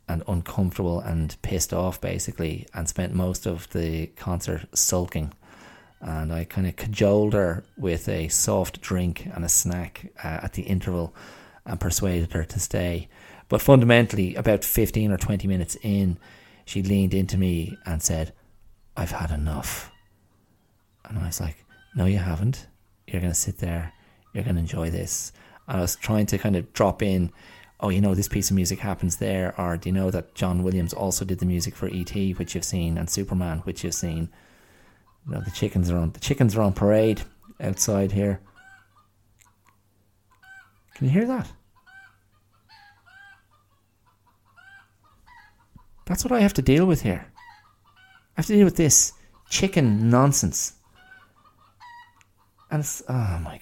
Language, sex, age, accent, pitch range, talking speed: English, male, 30-49, Irish, 90-110 Hz, 160 wpm